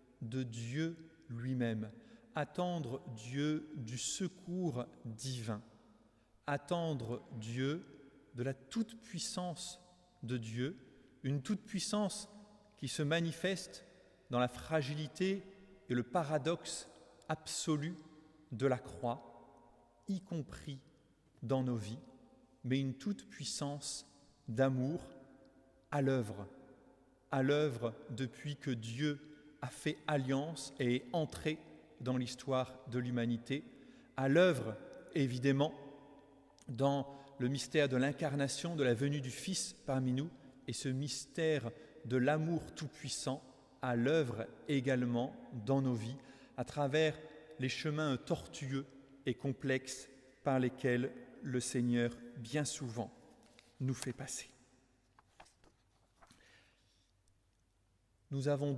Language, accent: French, French